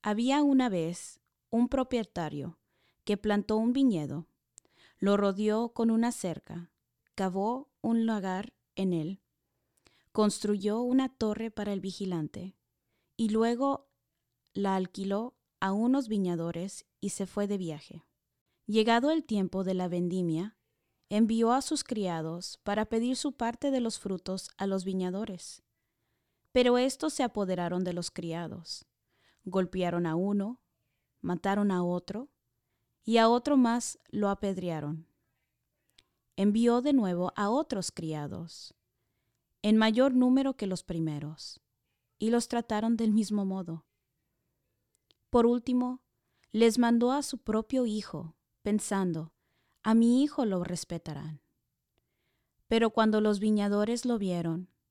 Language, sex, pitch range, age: English, female, 170-230 Hz, 20-39